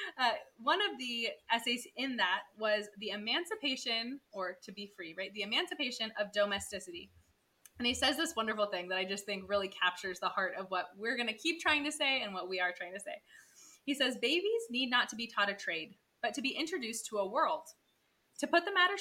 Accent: American